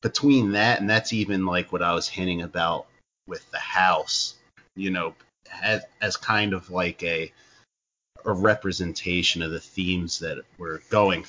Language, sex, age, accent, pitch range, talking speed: English, male, 30-49, American, 90-105 Hz, 160 wpm